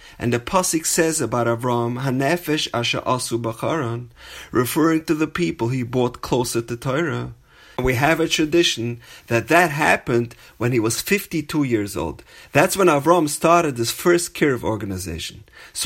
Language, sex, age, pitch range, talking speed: English, male, 30-49, 110-165 Hz, 165 wpm